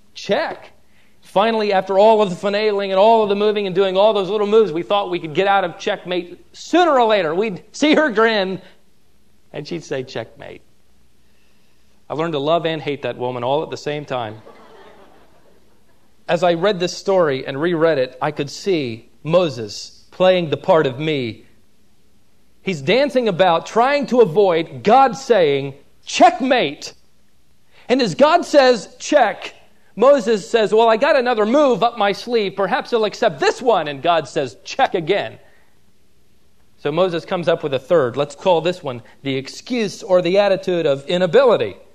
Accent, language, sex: American, English, male